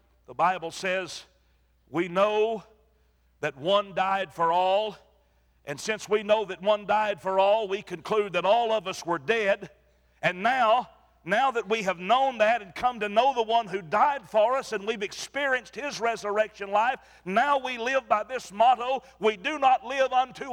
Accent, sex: American, male